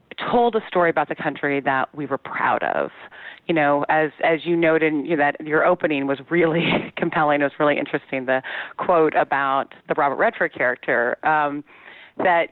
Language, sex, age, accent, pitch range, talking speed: English, female, 30-49, American, 150-185 Hz, 180 wpm